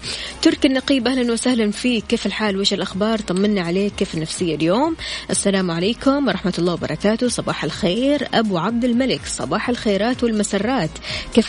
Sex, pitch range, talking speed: female, 195-235 Hz, 145 wpm